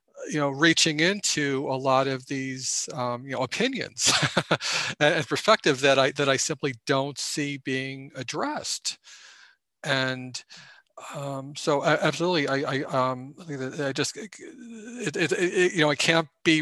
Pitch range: 135-160 Hz